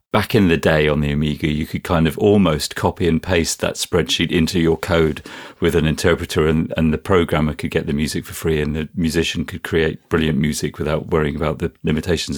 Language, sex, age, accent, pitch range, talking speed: English, male, 40-59, British, 80-105 Hz, 220 wpm